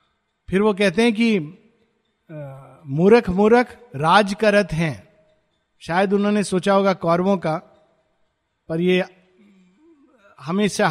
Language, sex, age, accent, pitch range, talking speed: Hindi, male, 50-69, native, 165-225 Hz, 105 wpm